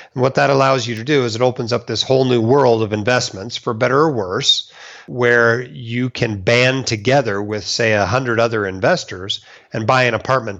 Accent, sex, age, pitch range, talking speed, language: American, male, 40-59, 105-130 Hz, 190 wpm, English